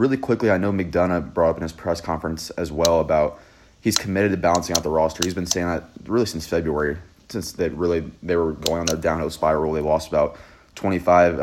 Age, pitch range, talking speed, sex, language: 30-49, 80-95 Hz, 220 wpm, male, English